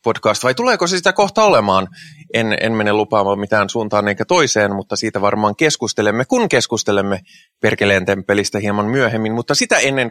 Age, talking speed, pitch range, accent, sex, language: 20-39, 160 wpm, 100-135 Hz, native, male, Finnish